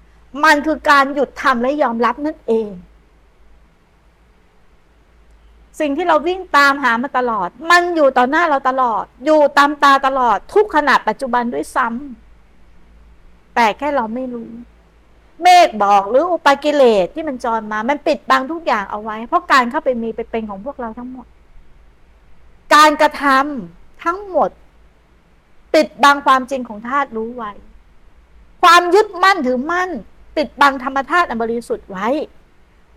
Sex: female